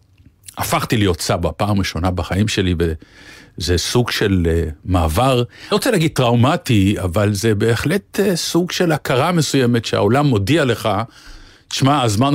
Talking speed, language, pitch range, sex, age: 140 wpm, Hebrew, 100-135 Hz, male, 50-69